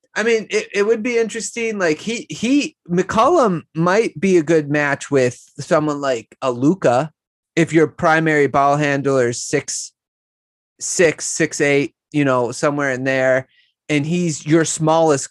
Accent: American